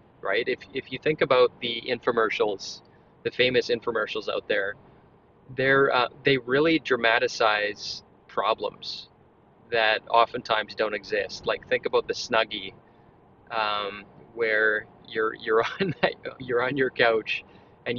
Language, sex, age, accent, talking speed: English, male, 20-39, American, 130 wpm